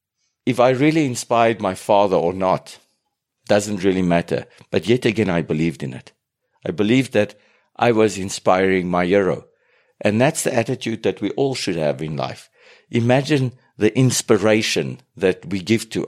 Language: English